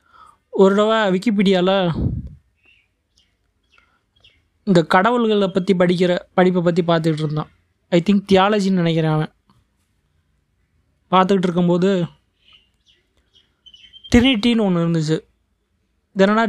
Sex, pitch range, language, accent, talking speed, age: male, 170-205 Hz, Tamil, native, 75 wpm, 20-39